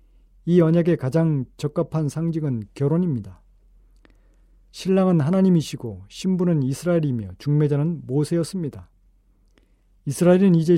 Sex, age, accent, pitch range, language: male, 40-59, native, 105-165 Hz, Korean